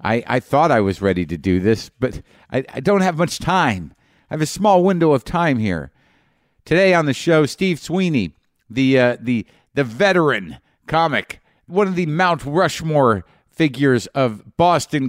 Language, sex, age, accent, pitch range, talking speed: English, male, 50-69, American, 110-150 Hz, 175 wpm